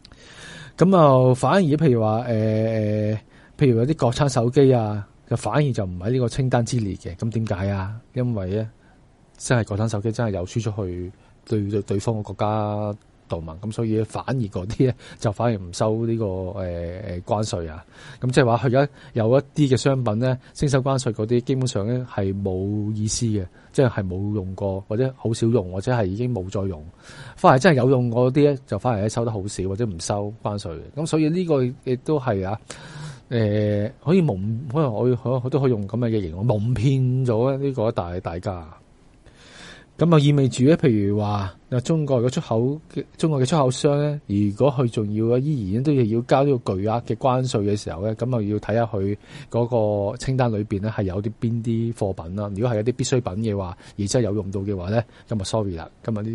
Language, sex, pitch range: Chinese, male, 105-130 Hz